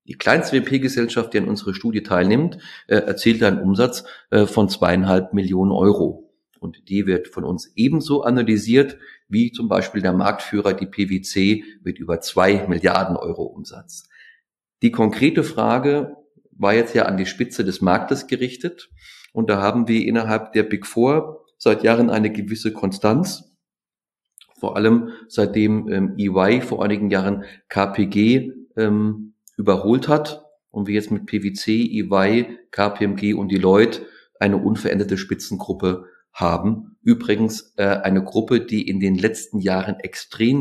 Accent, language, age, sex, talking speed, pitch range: German, German, 40-59, male, 145 wpm, 100-120 Hz